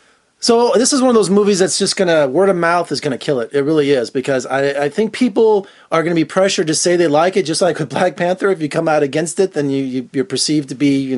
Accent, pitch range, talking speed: American, 145-200 Hz, 300 wpm